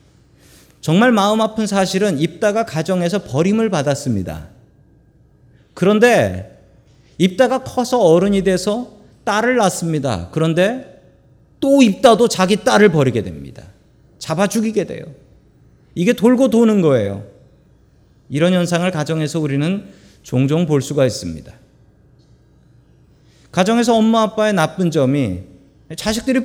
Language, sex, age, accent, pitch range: Korean, male, 40-59, native, 130-220 Hz